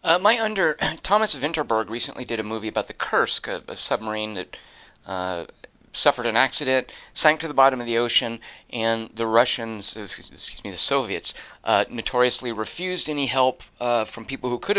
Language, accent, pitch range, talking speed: English, American, 115-155 Hz, 180 wpm